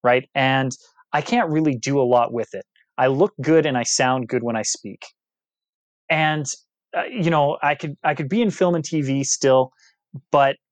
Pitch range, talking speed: 115-145 Hz, 195 wpm